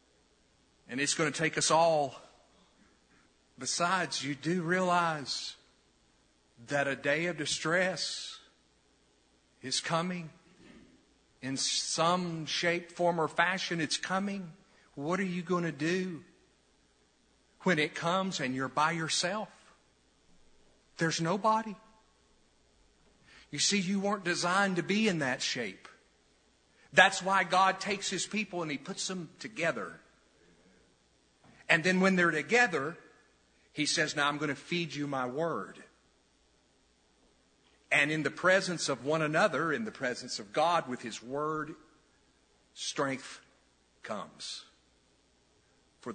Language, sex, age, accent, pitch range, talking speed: English, male, 50-69, American, 150-190 Hz, 125 wpm